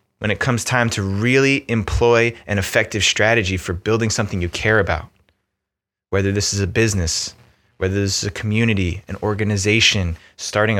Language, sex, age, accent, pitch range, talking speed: English, male, 20-39, American, 100-115 Hz, 160 wpm